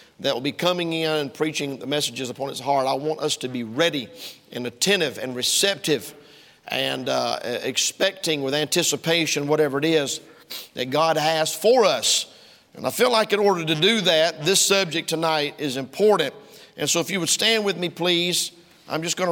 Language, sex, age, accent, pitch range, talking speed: English, male, 50-69, American, 150-180 Hz, 190 wpm